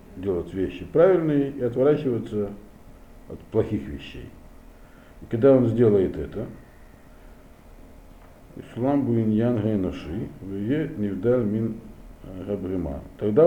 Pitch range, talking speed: 85-125 Hz, 60 wpm